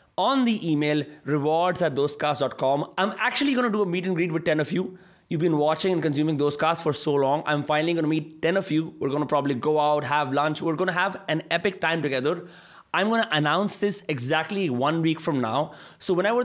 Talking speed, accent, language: 230 wpm, native, Hindi